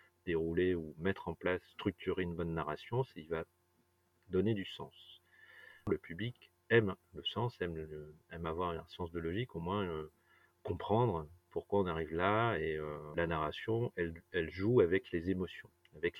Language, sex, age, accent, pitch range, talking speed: French, male, 40-59, French, 80-100 Hz, 165 wpm